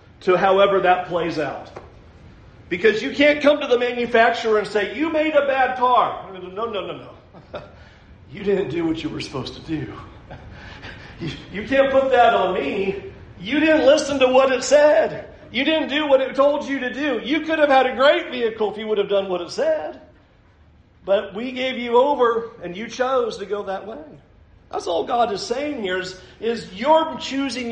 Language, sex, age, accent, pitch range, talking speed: English, male, 40-59, American, 145-245 Hz, 200 wpm